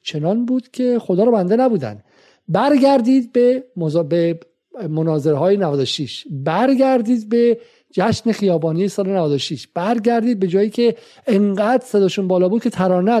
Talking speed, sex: 130 wpm, male